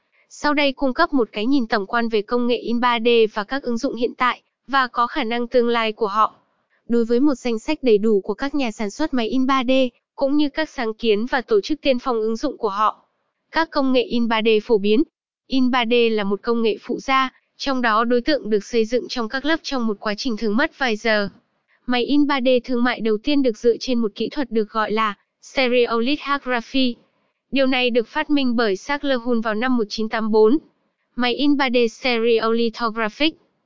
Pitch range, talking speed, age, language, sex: 225-270 Hz, 205 wpm, 10-29, Vietnamese, female